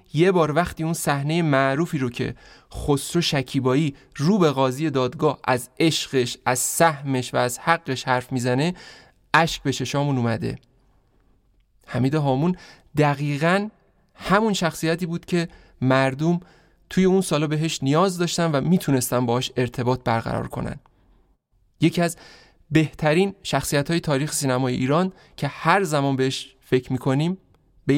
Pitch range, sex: 130-160 Hz, male